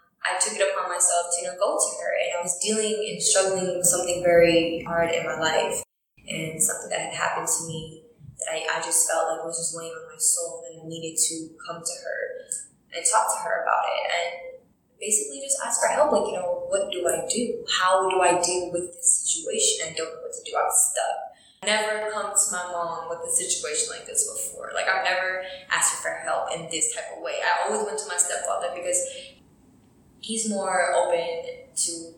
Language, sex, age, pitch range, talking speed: English, female, 10-29, 170-265 Hz, 220 wpm